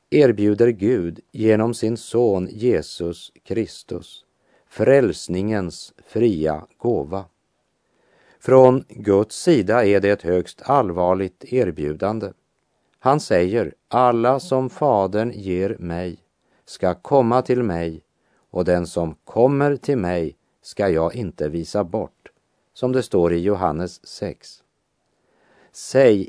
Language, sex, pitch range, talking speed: Portuguese, male, 90-120 Hz, 110 wpm